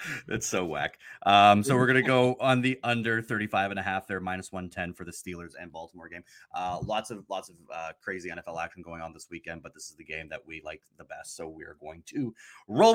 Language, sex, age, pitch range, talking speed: English, male, 30-49, 90-120 Hz, 250 wpm